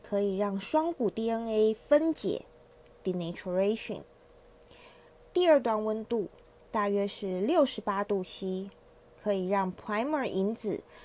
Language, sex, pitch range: Chinese, female, 195-255 Hz